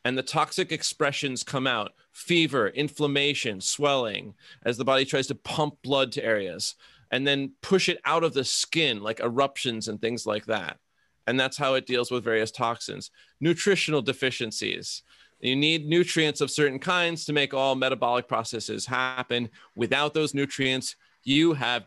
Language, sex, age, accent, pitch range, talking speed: English, male, 30-49, American, 120-155 Hz, 160 wpm